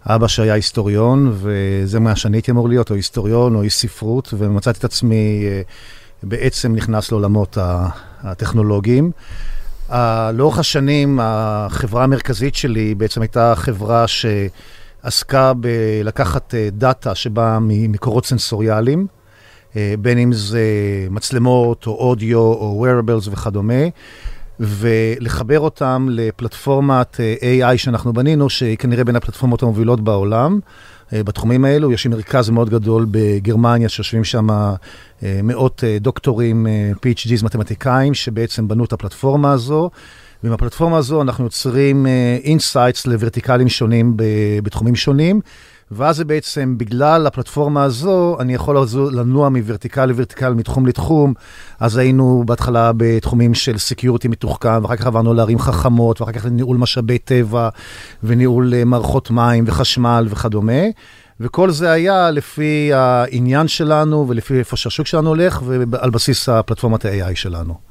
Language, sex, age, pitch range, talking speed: Hebrew, male, 50-69, 110-130 Hz, 120 wpm